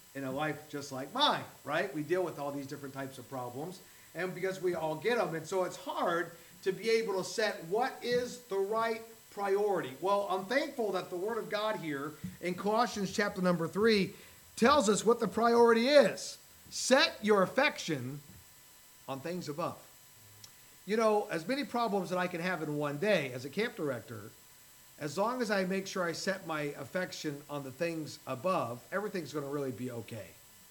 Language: English